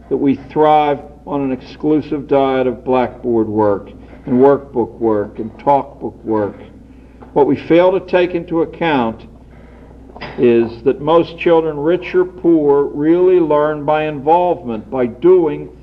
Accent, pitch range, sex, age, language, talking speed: American, 125-170 Hz, male, 60-79, English, 135 wpm